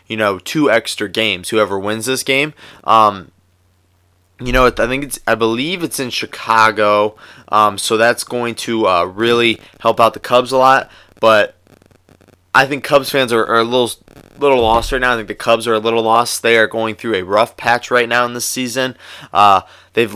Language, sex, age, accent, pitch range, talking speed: English, male, 20-39, American, 105-125 Hz, 200 wpm